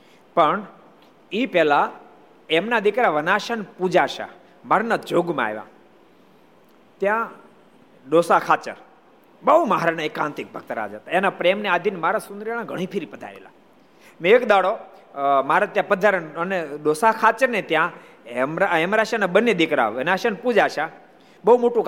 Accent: native